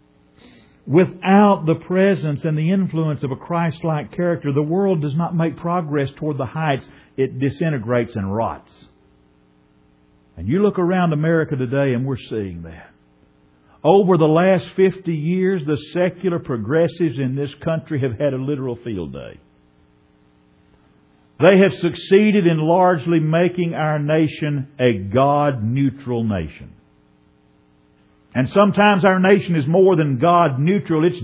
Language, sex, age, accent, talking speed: English, male, 50-69, American, 135 wpm